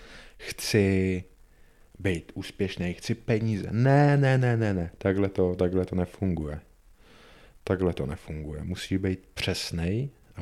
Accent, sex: native, male